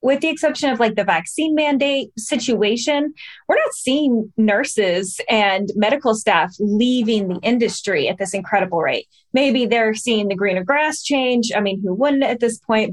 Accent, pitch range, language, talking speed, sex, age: American, 200-250 Hz, English, 170 wpm, female, 20-39